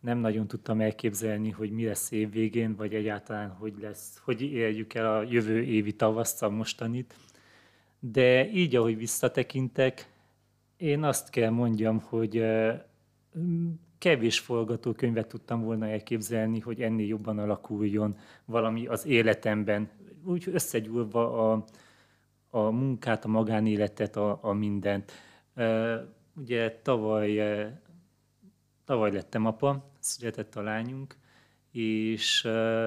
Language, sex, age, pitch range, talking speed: Hungarian, male, 30-49, 110-130 Hz, 110 wpm